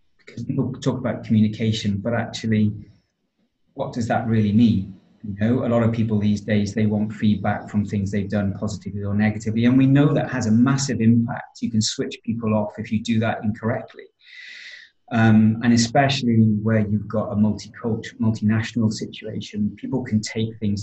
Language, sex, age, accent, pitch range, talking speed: English, male, 30-49, British, 105-120 Hz, 180 wpm